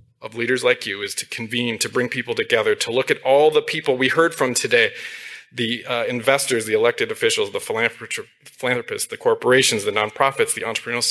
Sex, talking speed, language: male, 200 wpm, English